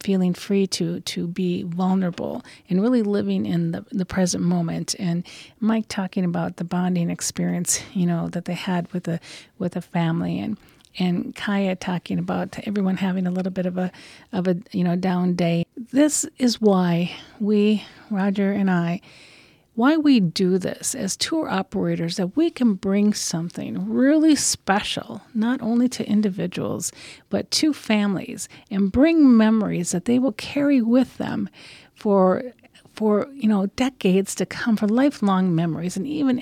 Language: English